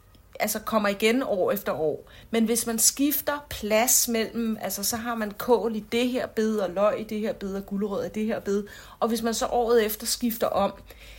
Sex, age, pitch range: female, 40-59, 180-225 Hz